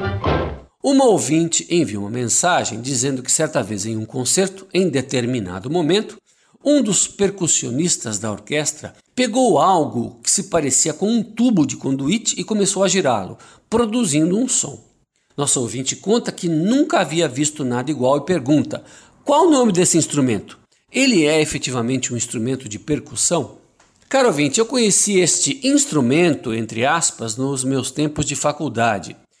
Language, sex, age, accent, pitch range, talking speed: Portuguese, male, 60-79, Brazilian, 130-195 Hz, 150 wpm